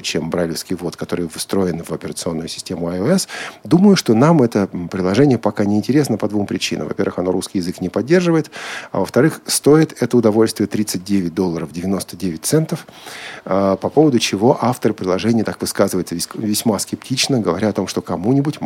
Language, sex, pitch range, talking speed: Russian, male, 90-130 Hz, 160 wpm